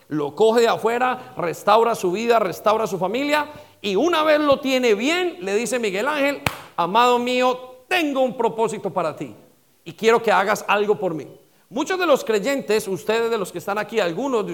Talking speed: 190 wpm